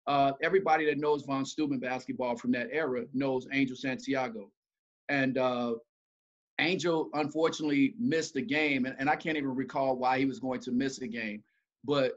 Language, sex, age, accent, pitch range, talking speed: English, male, 40-59, American, 130-160 Hz, 175 wpm